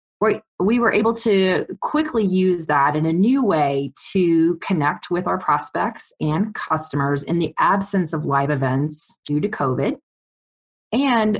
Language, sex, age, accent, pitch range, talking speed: English, female, 30-49, American, 155-205 Hz, 145 wpm